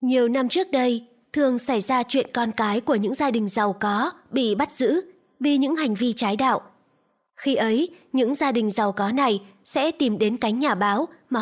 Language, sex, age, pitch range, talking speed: Vietnamese, female, 20-39, 220-275 Hz, 210 wpm